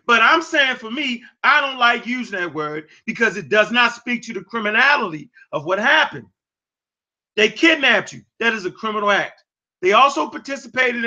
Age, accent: 30-49, American